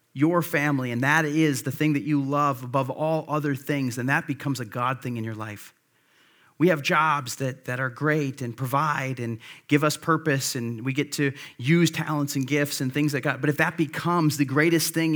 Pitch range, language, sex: 140-160 Hz, English, male